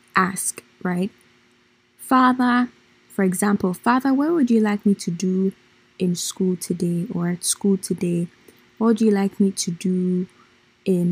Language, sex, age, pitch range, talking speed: English, female, 20-39, 185-225 Hz, 150 wpm